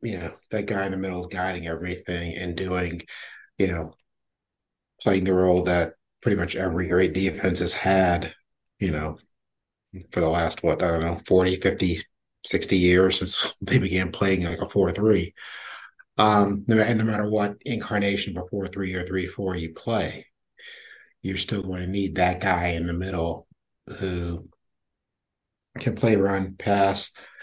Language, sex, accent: English, male, American